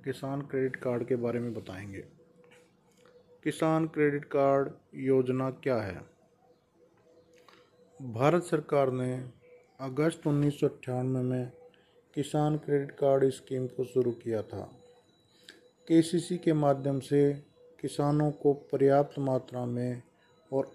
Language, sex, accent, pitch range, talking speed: Hindi, male, native, 130-160 Hz, 110 wpm